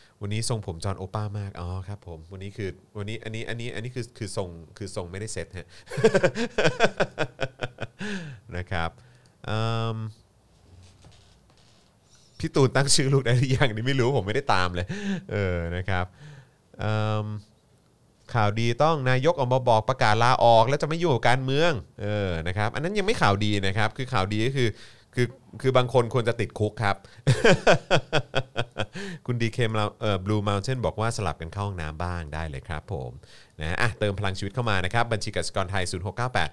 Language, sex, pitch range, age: Thai, male, 95-125 Hz, 30-49